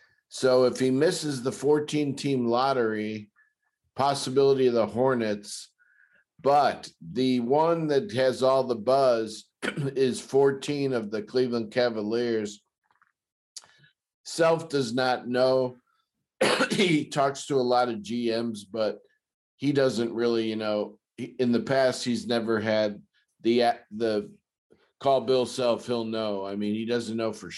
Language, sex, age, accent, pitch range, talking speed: English, male, 50-69, American, 115-135 Hz, 135 wpm